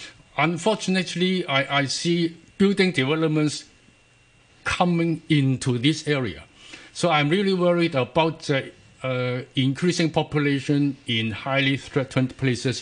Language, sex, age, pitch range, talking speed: English, male, 60-79, 125-165 Hz, 110 wpm